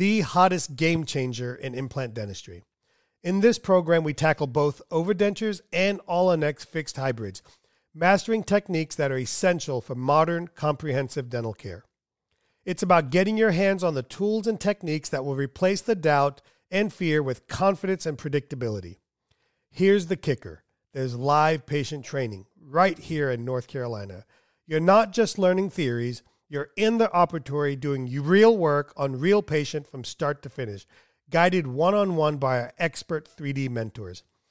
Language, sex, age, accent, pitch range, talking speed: English, male, 40-59, American, 130-185 Hz, 155 wpm